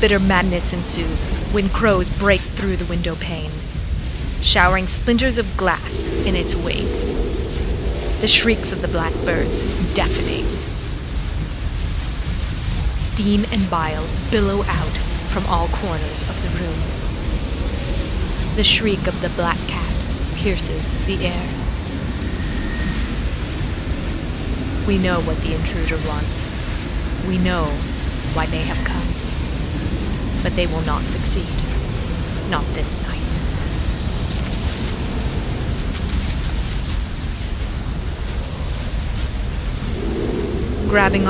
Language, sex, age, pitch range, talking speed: English, female, 30-49, 75-90 Hz, 95 wpm